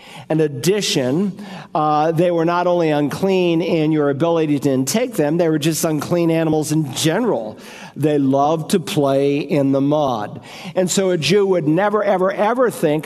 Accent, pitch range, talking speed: American, 160-195 Hz, 170 wpm